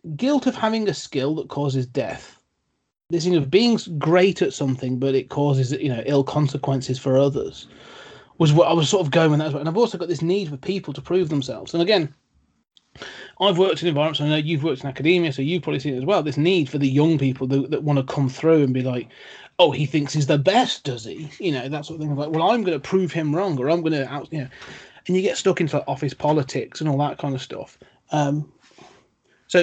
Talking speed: 235 wpm